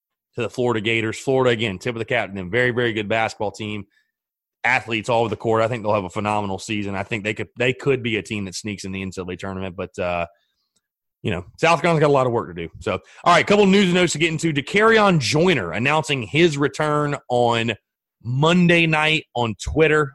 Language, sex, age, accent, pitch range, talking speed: English, male, 30-49, American, 115-165 Hz, 240 wpm